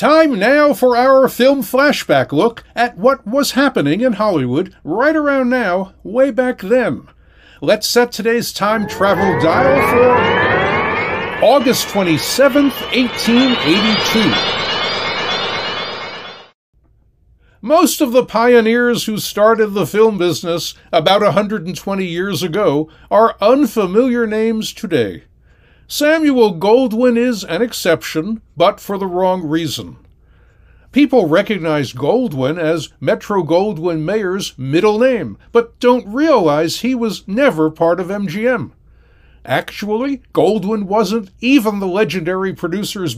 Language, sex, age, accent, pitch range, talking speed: English, male, 60-79, American, 180-250 Hz, 115 wpm